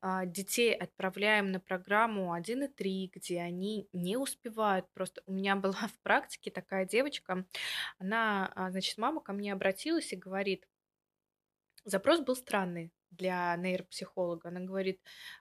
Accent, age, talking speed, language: native, 20-39, 130 wpm, Russian